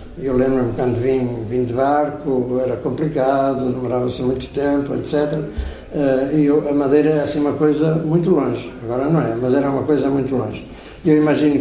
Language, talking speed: Portuguese, 175 wpm